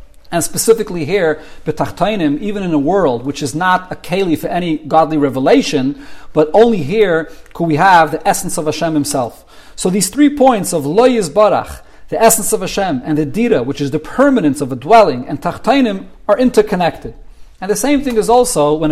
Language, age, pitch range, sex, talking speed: English, 40-59, 155-210 Hz, male, 185 wpm